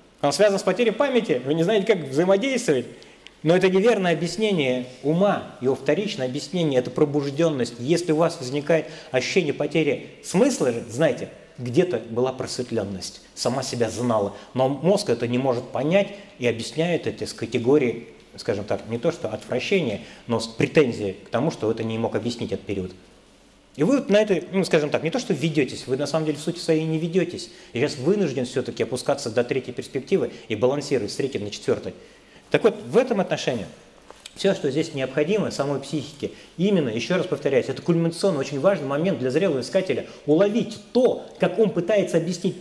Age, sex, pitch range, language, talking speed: 30-49, male, 125-185 Hz, Russian, 175 wpm